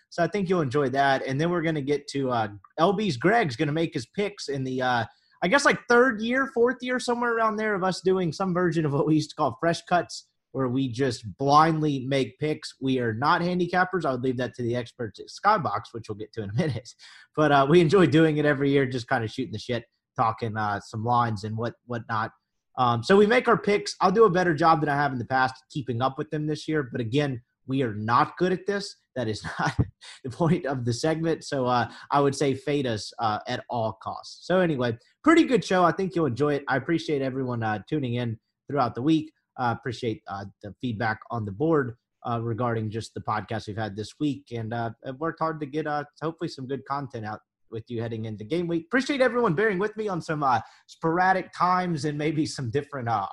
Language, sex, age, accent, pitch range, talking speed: English, male, 30-49, American, 120-165 Hz, 240 wpm